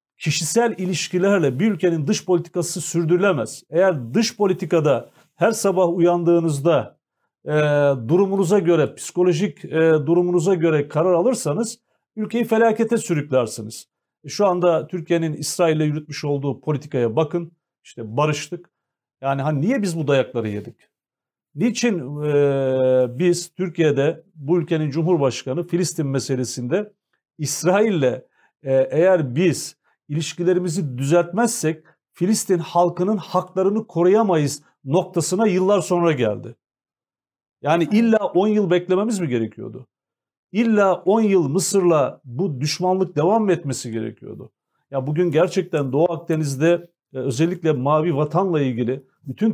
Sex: male